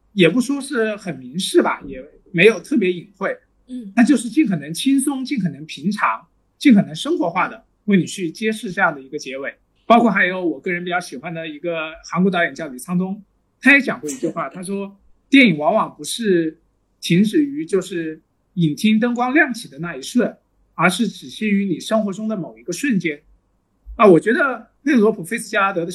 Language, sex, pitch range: Chinese, male, 175-245 Hz